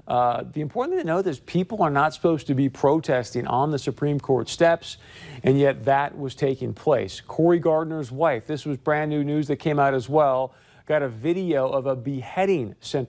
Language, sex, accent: English, male, American